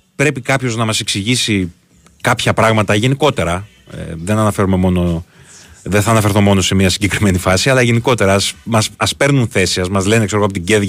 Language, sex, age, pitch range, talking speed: Greek, male, 30-49, 95-125 Hz, 170 wpm